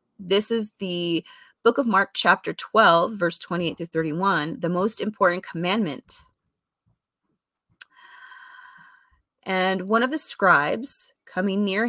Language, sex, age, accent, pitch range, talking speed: English, female, 30-49, American, 170-230 Hz, 115 wpm